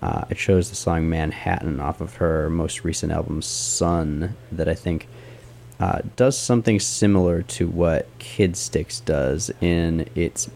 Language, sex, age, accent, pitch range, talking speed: English, male, 20-39, American, 85-120 Hz, 155 wpm